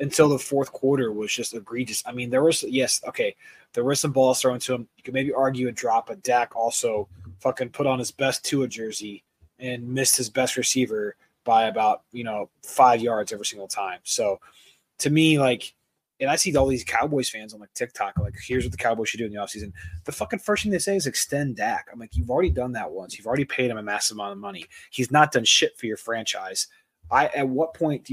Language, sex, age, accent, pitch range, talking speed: English, male, 20-39, American, 105-135 Hz, 240 wpm